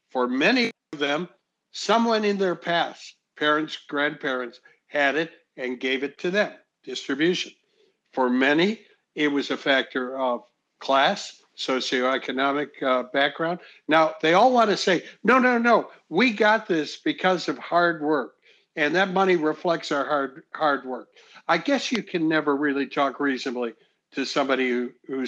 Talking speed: 155 wpm